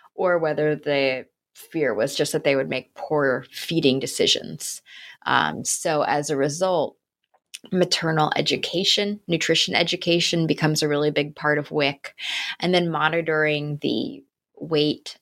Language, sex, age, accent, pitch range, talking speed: English, female, 20-39, American, 145-170 Hz, 135 wpm